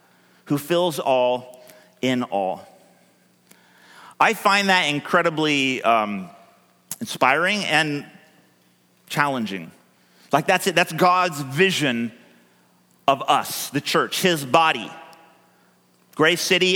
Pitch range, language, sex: 145-185 Hz, English, male